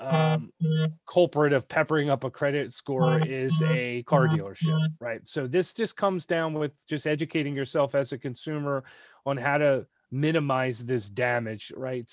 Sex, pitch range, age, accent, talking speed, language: male, 135-160 Hz, 30-49, American, 160 wpm, English